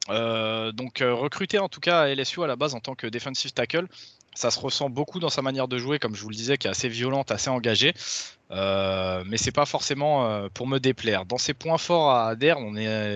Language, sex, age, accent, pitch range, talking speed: French, male, 20-39, French, 110-145 Hz, 240 wpm